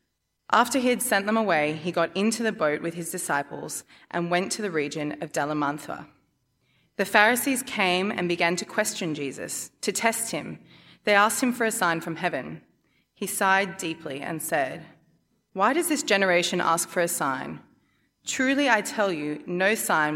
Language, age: English, 20-39